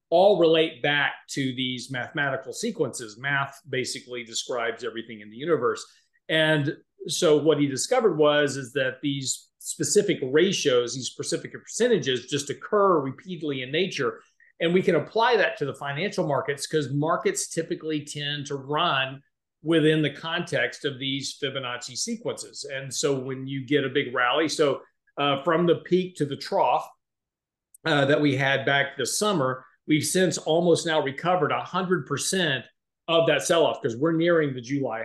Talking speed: 160 wpm